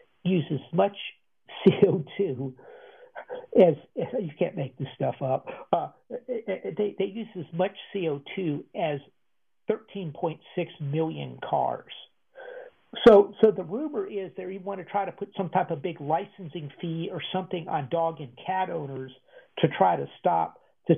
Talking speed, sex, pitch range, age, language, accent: 155 wpm, male, 150-200 Hz, 50-69, English, American